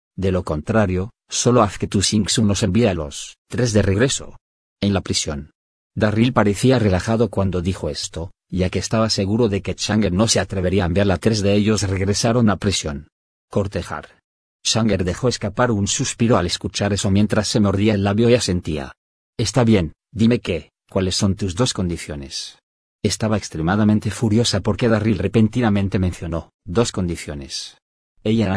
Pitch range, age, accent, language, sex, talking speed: 95-110 Hz, 40-59, Spanish, Spanish, male, 165 wpm